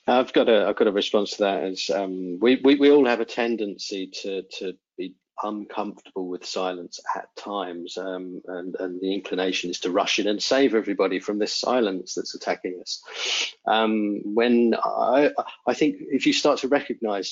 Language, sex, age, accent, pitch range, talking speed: English, male, 40-59, British, 95-120 Hz, 185 wpm